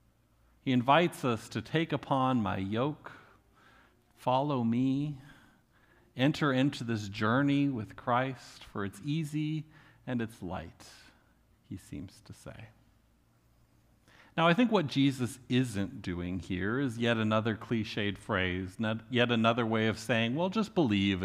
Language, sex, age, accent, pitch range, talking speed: English, male, 50-69, American, 105-145 Hz, 135 wpm